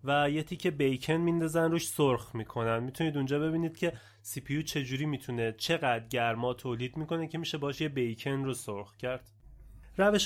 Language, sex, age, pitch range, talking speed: Persian, male, 30-49, 125-165 Hz, 170 wpm